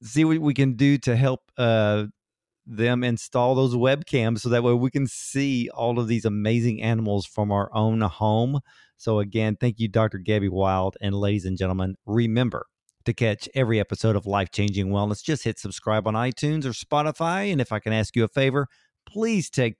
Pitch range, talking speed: 105-135 Hz, 195 wpm